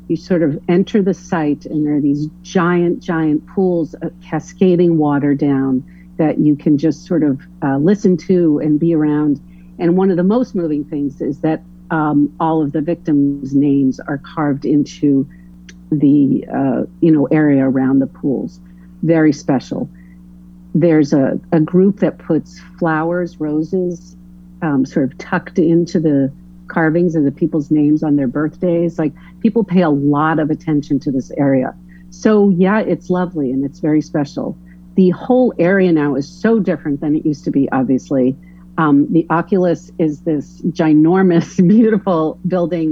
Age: 50-69